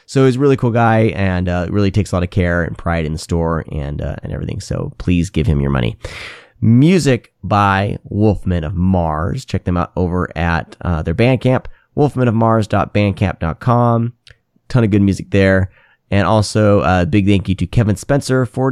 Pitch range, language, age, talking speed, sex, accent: 95-125 Hz, English, 30-49, 190 wpm, male, American